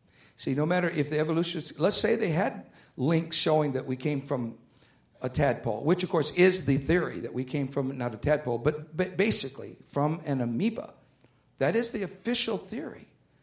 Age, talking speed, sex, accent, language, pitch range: 60-79, 185 wpm, male, American, English, 135-205 Hz